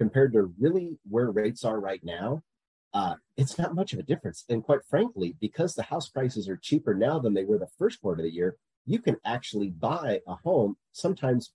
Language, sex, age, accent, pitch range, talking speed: English, male, 40-59, American, 105-130 Hz, 215 wpm